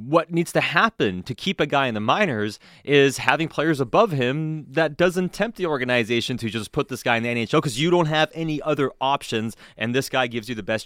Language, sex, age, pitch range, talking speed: English, male, 30-49, 110-155 Hz, 240 wpm